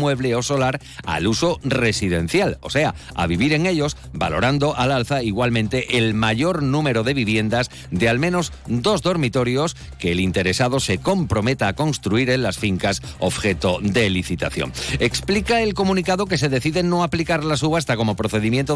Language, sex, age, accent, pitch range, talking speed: Spanish, male, 50-69, Spanish, 110-155 Hz, 165 wpm